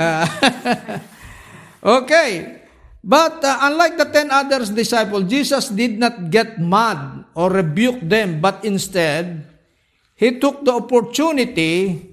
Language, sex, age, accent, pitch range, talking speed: Filipino, male, 50-69, native, 155-230 Hz, 110 wpm